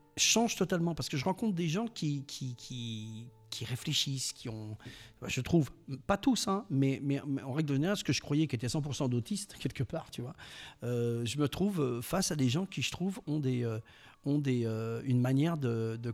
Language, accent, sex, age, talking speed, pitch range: French, French, male, 50-69, 220 wpm, 120-155 Hz